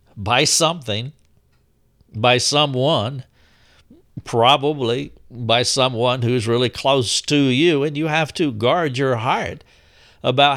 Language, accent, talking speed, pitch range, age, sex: English, American, 115 wpm, 115-150 Hz, 60-79, male